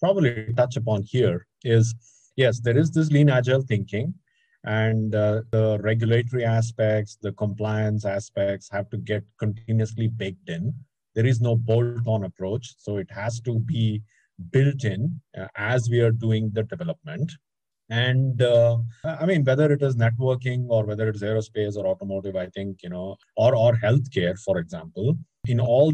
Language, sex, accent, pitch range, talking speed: English, male, Indian, 105-130 Hz, 160 wpm